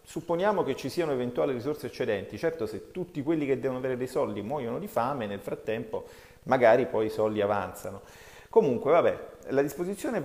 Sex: male